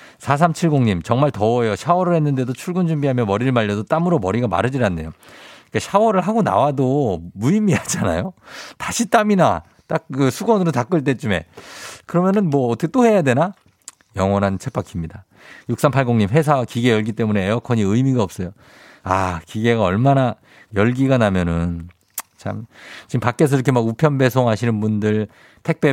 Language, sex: Korean, male